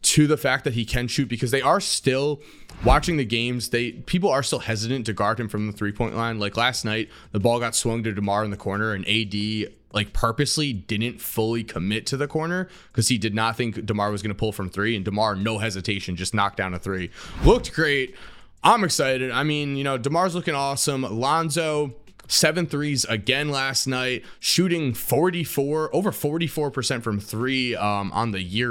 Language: English